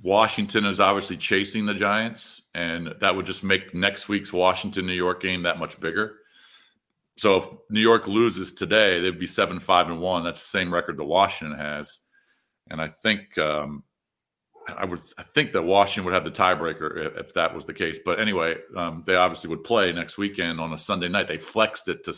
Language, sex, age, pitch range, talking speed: English, male, 40-59, 90-105 Hz, 195 wpm